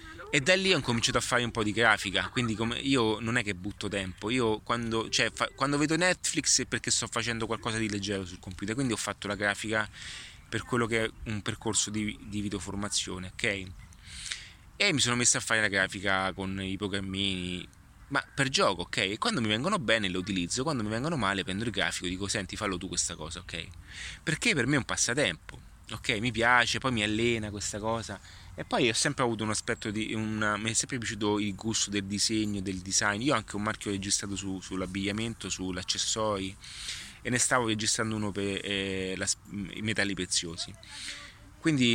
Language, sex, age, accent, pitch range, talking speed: Italian, male, 20-39, native, 95-115 Hz, 200 wpm